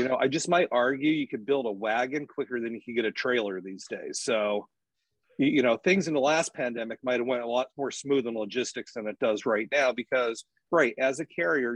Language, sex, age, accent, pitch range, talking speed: English, male, 40-59, American, 120-140 Hz, 240 wpm